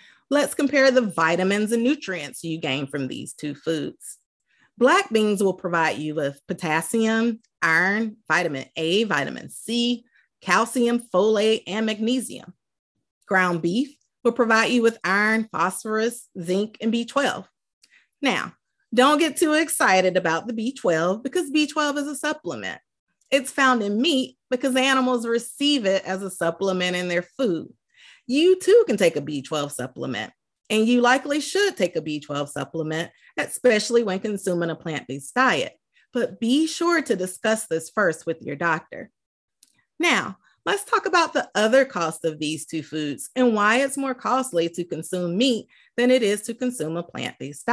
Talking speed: 155 wpm